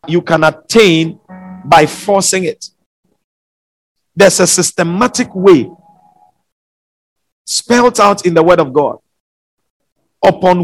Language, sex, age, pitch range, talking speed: English, male, 50-69, 180-245 Hz, 100 wpm